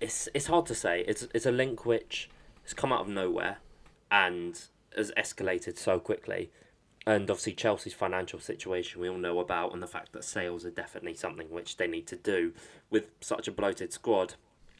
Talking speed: 190 wpm